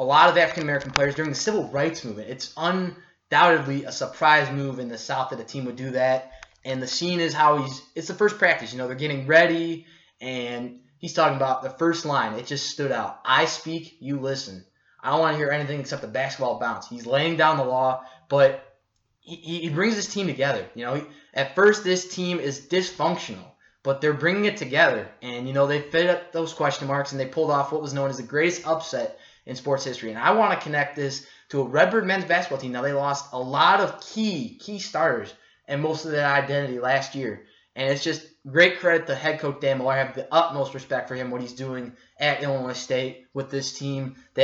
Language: English